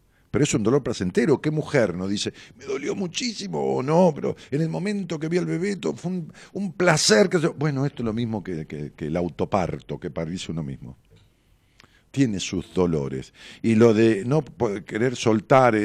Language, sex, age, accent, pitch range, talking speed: Spanish, male, 50-69, Argentinian, 95-140 Hz, 195 wpm